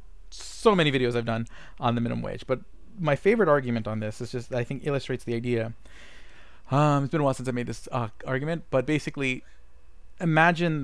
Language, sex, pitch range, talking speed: English, male, 115-150 Hz, 200 wpm